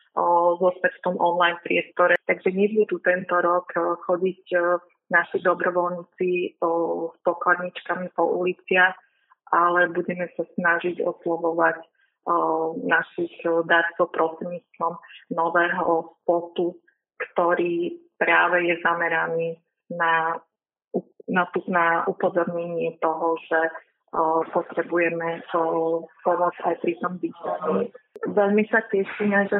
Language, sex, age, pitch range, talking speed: Slovak, female, 30-49, 175-195 Hz, 95 wpm